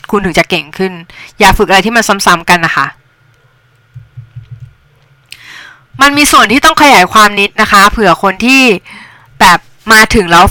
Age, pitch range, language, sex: 20-39, 195-255 Hz, Thai, female